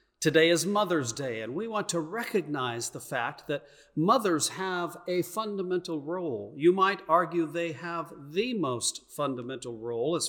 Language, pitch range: English, 155-210 Hz